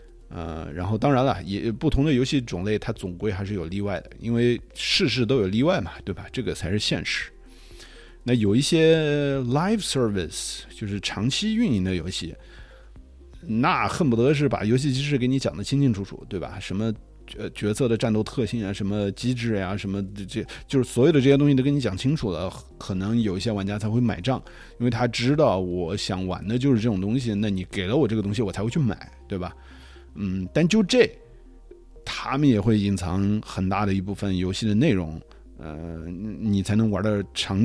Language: Chinese